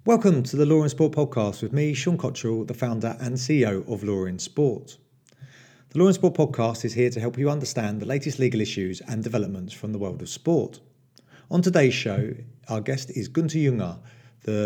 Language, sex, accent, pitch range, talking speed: English, male, British, 105-135 Hz, 205 wpm